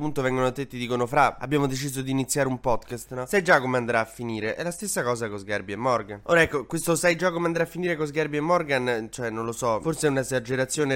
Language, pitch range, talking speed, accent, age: Italian, 120-145 Hz, 250 wpm, native, 20-39